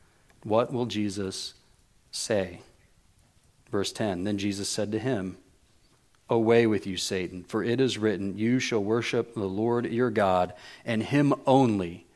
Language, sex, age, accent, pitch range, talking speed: English, male, 40-59, American, 105-140 Hz, 145 wpm